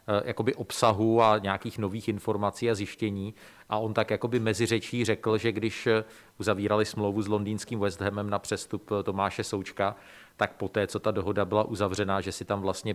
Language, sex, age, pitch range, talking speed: Czech, male, 40-59, 100-115 Hz, 170 wpm